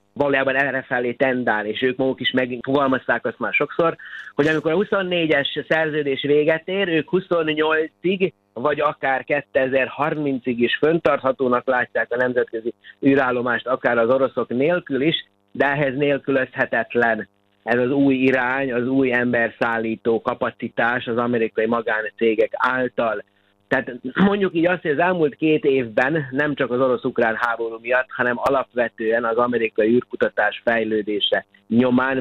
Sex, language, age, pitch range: male, Hungarian, 30-49, 115-145 Hz